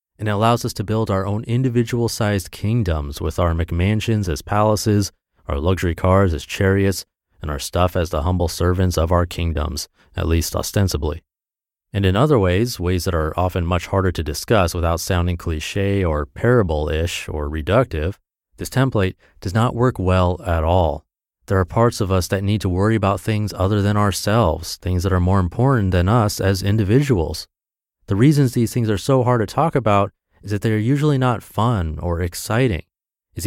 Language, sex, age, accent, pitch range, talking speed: English, male, 30-49, American, 90-115 Hz, 185 wpm